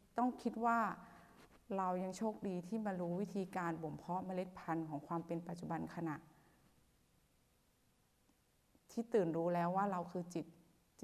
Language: Thai